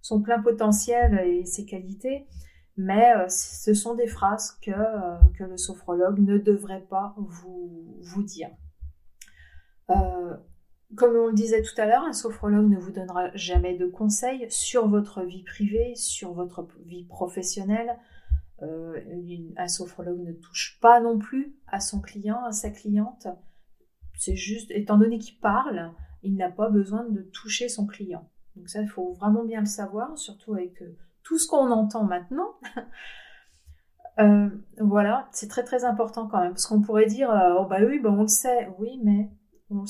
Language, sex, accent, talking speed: French, female, French, 170 wpm